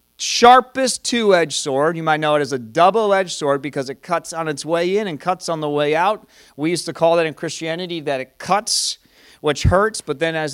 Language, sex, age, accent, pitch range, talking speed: English, male, 40-59, American, 145-195 Hz, 220 wpm